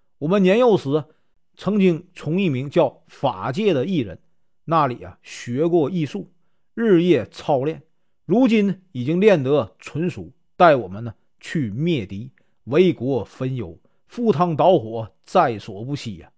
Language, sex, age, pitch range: Chinese, male, 50-69, 125-190 Hz